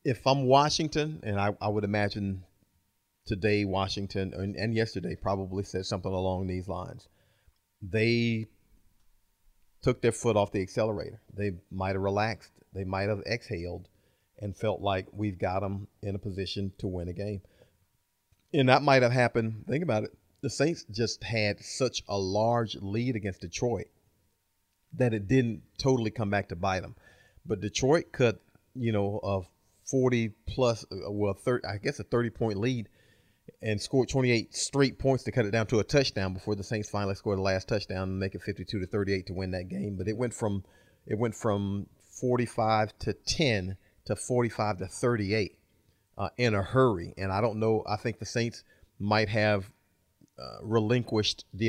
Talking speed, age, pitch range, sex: 175 wpm, 40-59, 95-115 Hz, male